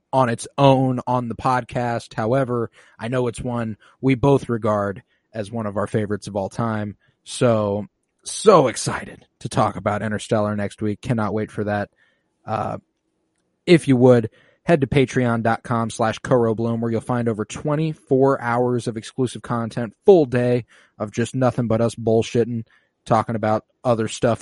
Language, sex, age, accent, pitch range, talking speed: English, male, 20-39, American, 105-130 Hz, 160 wpm